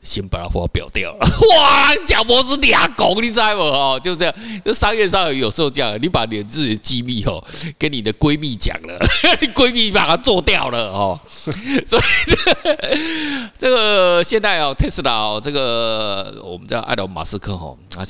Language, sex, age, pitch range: Chinese, male, 50-69, 100-160 Hz